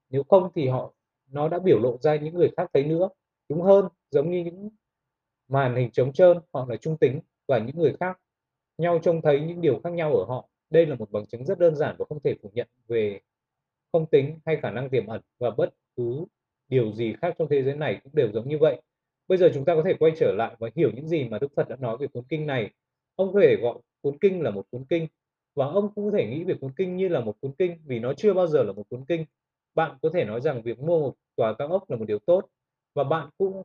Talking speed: 265 wpm